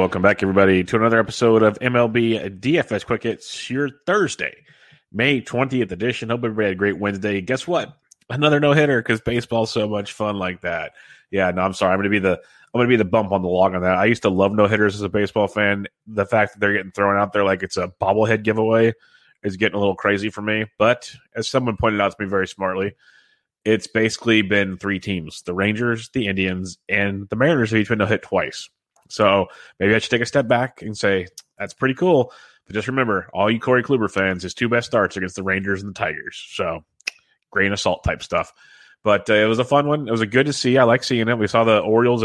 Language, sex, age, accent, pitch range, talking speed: English, male, 30-49, American, 100-115 Hz, 235 wpm